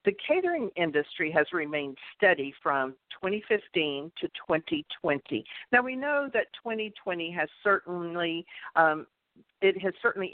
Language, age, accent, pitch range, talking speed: English, 50-69, American, 160-230 Hz, 120 wpm